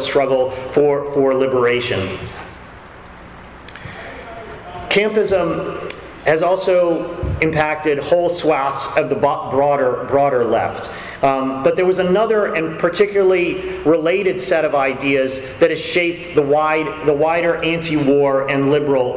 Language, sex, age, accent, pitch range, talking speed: English, male, 40-59, American, 140-175 Hz, 115 wpm